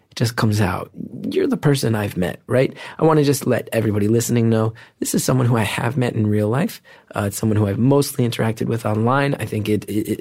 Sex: male